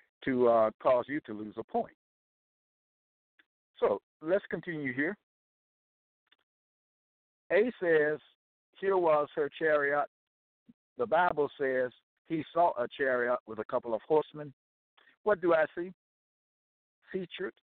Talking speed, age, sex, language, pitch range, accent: 120 wpm, 60-79, male, English, 130-185 Hz, American